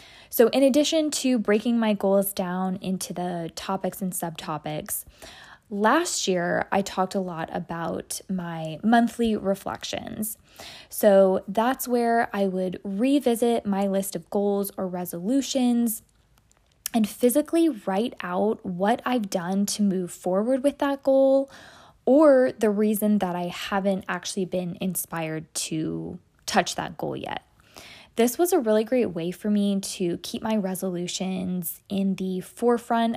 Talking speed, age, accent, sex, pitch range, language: 140 wpm, 20-39, American, female, 185-230 Hz, English